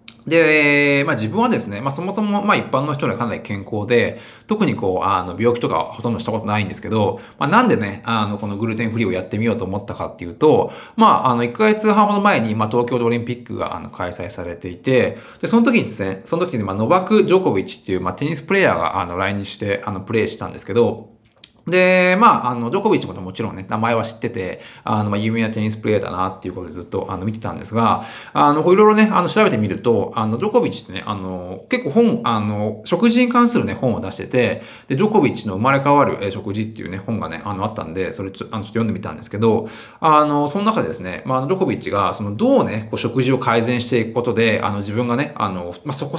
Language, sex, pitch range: Japanese, male, 105-145 Hz